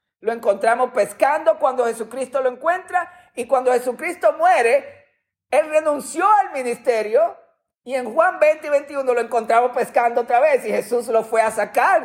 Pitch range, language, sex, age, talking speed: 225-325 Hz, Spanish, male, 50-69, 160 wpm